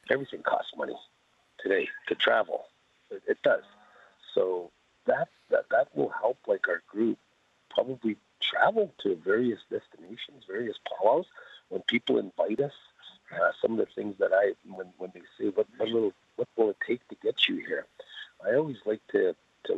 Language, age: English, 50-69